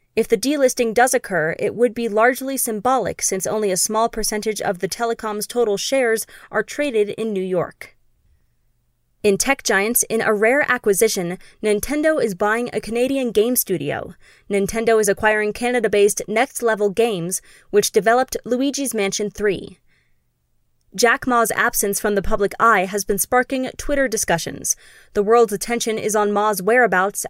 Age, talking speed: 20-39, 155 wpm